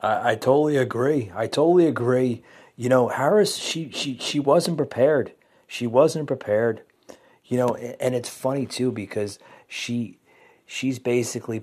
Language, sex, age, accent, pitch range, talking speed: English, male, 40-59, American, 105-125 Hz, 140 wpm